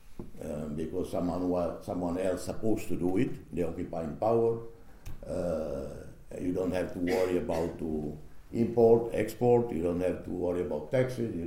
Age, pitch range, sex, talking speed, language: 60-79, 85-115 Hz, male, 160 wpm, English